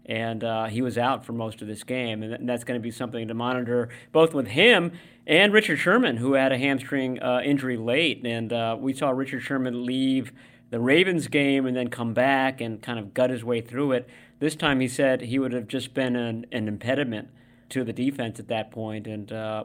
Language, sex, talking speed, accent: English, male, 225 wpm, American